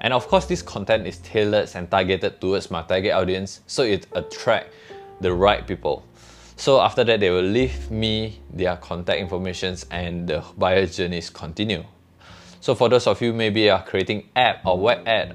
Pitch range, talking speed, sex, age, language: 90-110 Hz, 185 wpm, male, 20-39, English